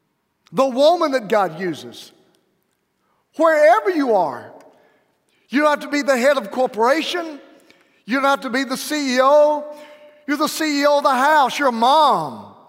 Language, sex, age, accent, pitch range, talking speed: English, male, 50-69, American, 225-300 Hz, 155 wpm